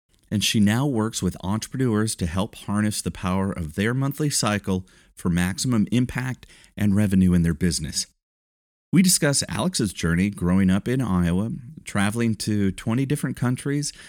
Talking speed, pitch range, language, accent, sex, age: 155 wpm, 95-125 Hz, English, American, male, 40-59